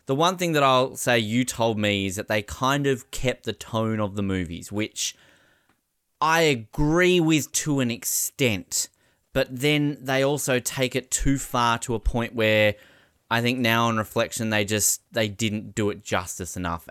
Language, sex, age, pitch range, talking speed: English, male, 20-39, 105-135 Hz, 185 wpm